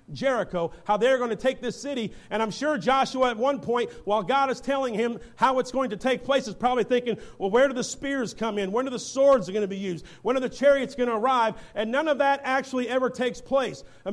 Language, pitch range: English, 235-285 Hz